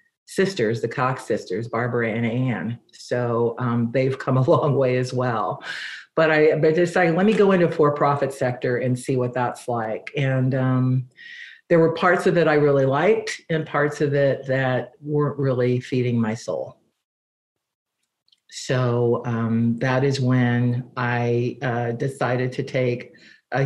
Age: 50-69